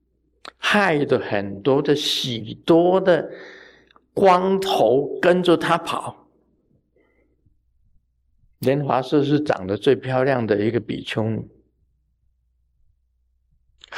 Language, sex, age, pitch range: Chinese, male, 50-69, 100-150 Hz